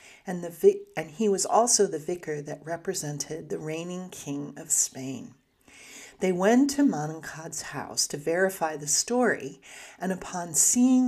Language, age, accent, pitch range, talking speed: English, 40-59, American, 150-210 Hz, 145 wpm